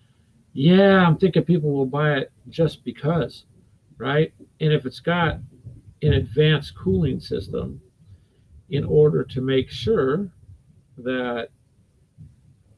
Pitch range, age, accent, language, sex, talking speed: 120-155 Hz, 50-69, American, English, male, 115 wpm